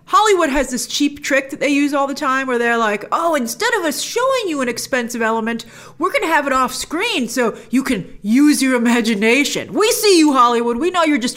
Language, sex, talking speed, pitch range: English, female, 230 wpm, 200-290 Hz